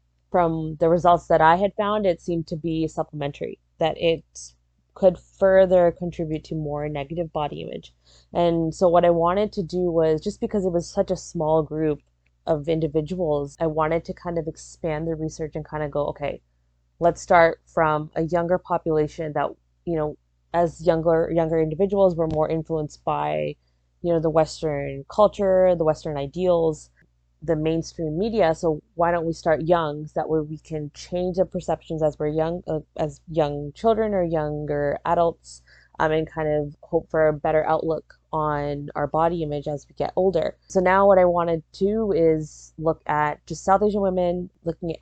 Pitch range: 150-175 Hz